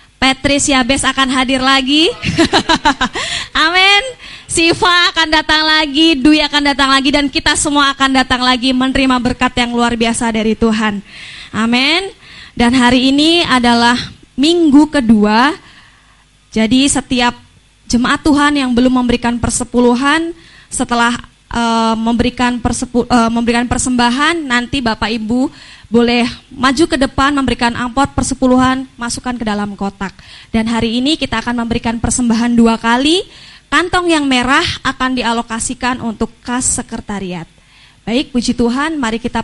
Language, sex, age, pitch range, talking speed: Indonesian, female, 20-39, 230-275 Hz, 130 wpm